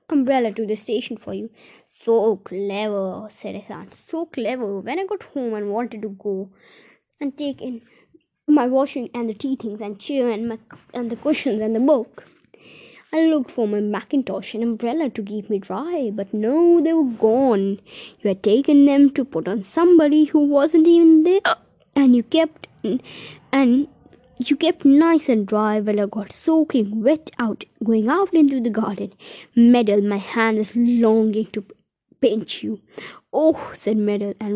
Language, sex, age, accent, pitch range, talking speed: Hindi, female, 20-39, native, 215-285 Hz, 175 wpm